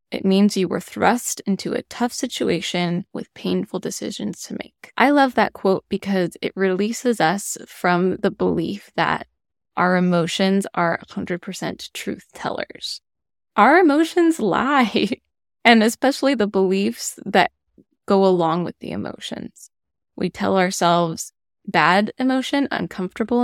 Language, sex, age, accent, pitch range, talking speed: English, female, 10-29, American, 180-240 Hz, 130 wpm